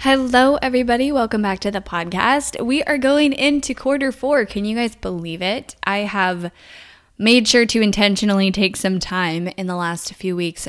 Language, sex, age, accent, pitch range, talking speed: English, female, 10-29, American, 165-200 Hz, 180 wpm